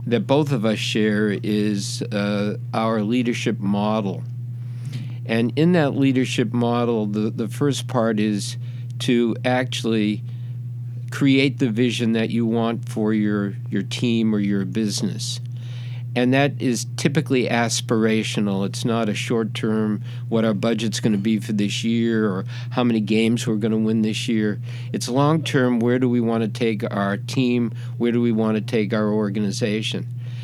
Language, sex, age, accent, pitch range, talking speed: English, male, 50-69, American, 110-120 Hz, 160 wpm